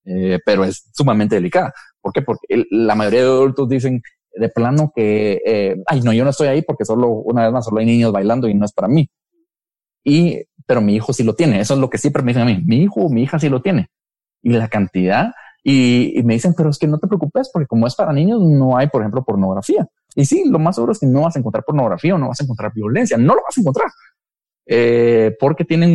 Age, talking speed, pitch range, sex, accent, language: 30-49, 255 wpm, 115-155 Hz, male, Mexican, Spanish